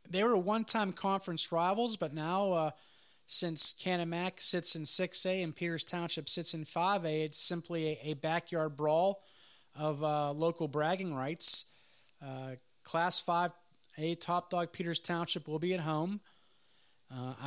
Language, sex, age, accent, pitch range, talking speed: English, male, 30-49, American, 145-170 Hz, 145 wpm